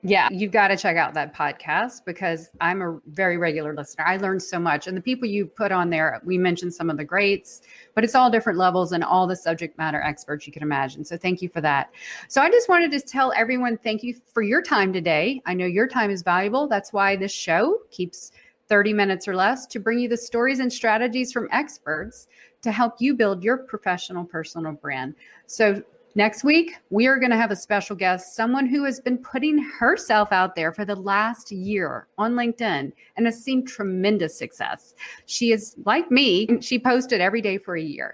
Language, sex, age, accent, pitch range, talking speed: English, female, 40-59, American, 185-245 Hz, 215 wpm